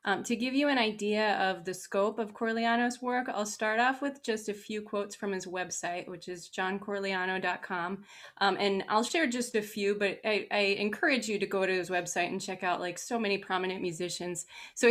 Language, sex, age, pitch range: English, female, 20-39, 190-225 Hz